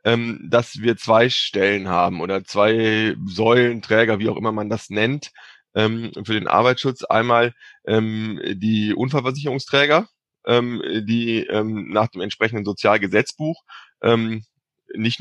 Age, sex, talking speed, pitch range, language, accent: 30-49, male, 105 wpm, 110-125 Hz, German, German